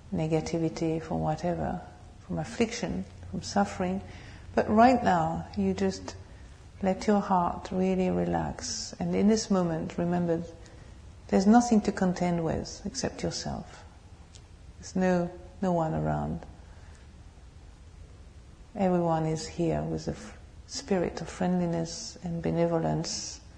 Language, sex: English, female